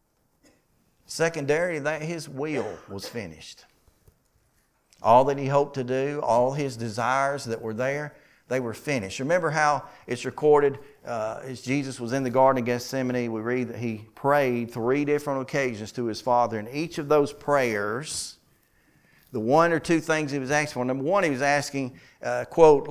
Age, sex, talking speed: 50-69, male, 175 wpm